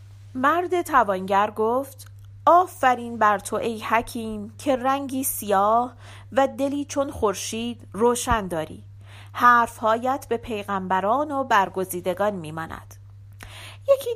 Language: Persian